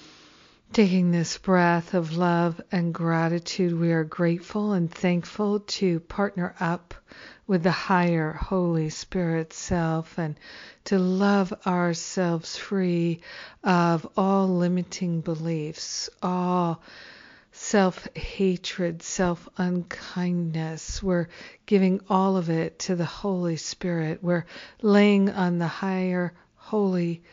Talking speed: 105 wpm